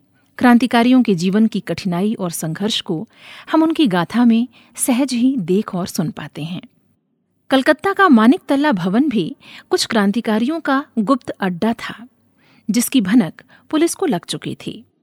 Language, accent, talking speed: Hindi, native, 90 wpm